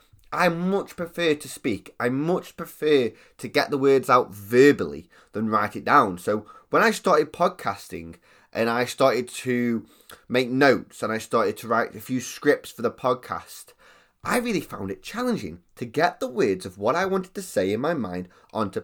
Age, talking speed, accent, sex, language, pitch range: 20-39, 190 wpm, British, male, English, 110-155 Hz